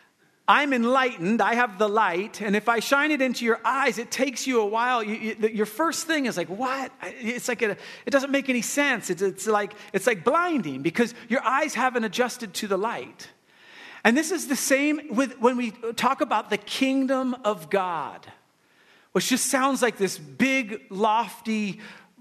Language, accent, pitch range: English, American, 190-255 Hz